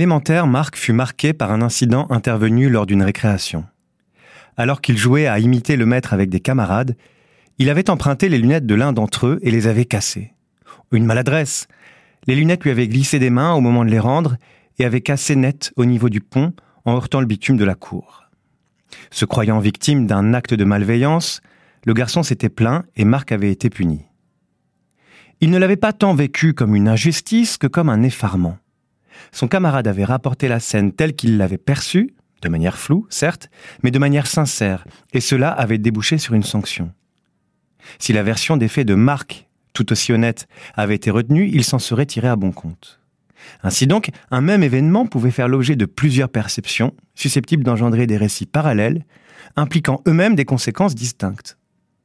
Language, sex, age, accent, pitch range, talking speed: French, male, 40-59, French, 110-150 Hz, 180 wpm